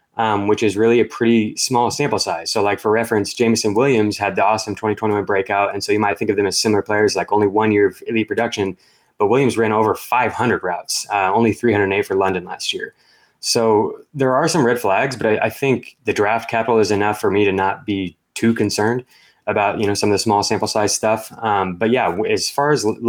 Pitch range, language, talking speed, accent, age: 100-115 Hz, English, 230 wpm, American, 20-39